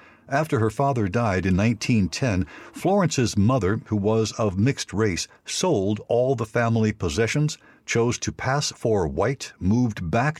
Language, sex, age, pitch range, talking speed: English, male, 60-79, 100-130 Hz, 145 wpm